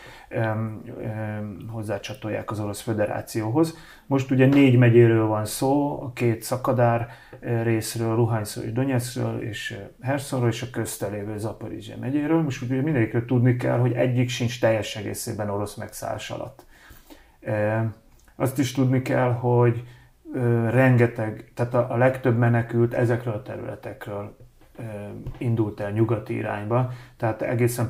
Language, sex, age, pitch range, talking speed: Hungarian, male, 30-49, 110-125 Hz, 120 wpm